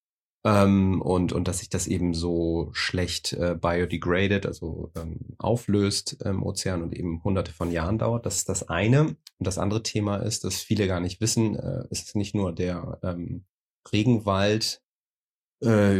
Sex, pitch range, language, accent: male, 90-105 Hz, German, German